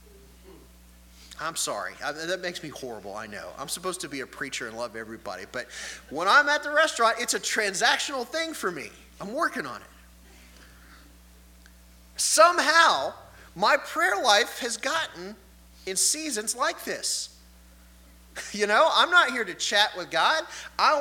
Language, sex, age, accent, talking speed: English, male, 30-49, American, 150 wpm